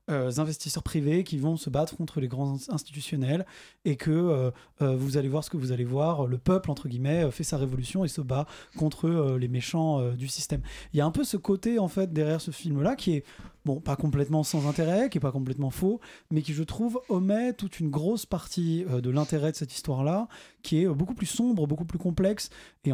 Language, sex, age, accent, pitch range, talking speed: French, male, 20-39, French, 140-185 Hz, 235 wpm